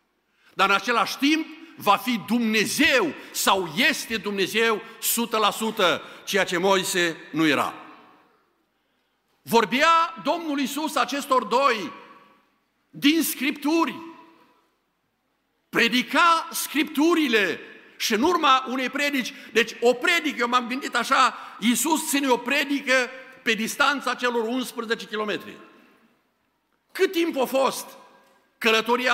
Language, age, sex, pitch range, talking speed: Romanian, 50-69, male, 195-275 Hz, 105 wpm